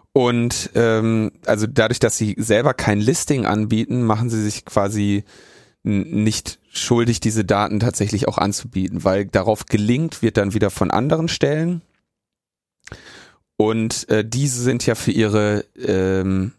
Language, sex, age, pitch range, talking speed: German, male, 30-49, 100-115 Hz, 140 wpm